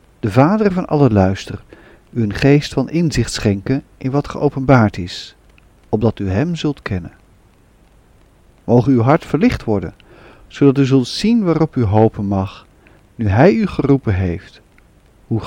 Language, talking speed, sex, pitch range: Dutch, 150 wpm, male, 105-150 Hz